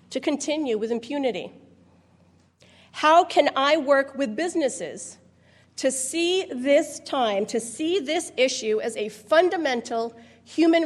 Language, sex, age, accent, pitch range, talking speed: English, female, 40-59, American, 215-300 Hz, 120 wpm